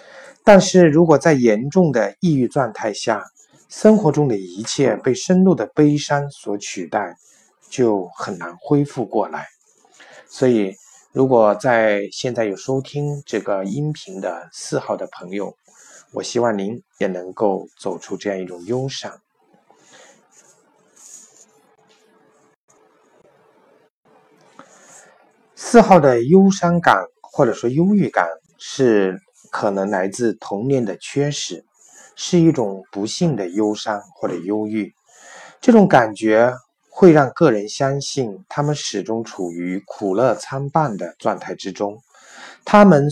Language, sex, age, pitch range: Chinese, male, 50-69, 105-165 Hz